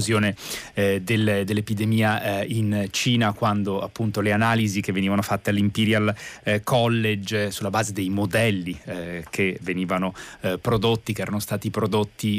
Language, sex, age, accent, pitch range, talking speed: Italian, male, 30-49, native, 100-115 Hz, 125 wpm